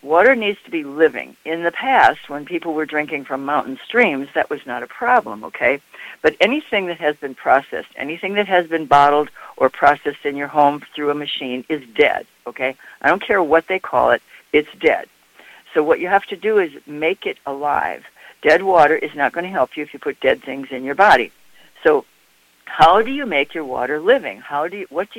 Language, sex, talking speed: English, female, 215 wpm